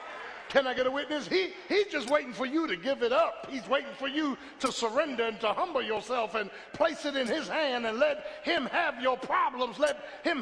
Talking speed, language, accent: 225 wpm, English, American